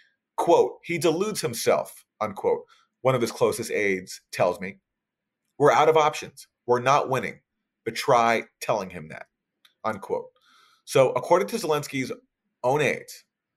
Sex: male